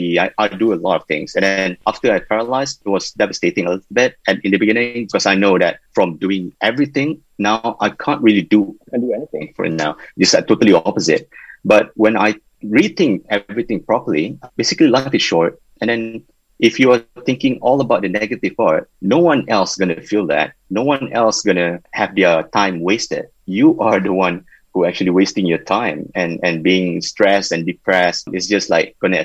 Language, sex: English, male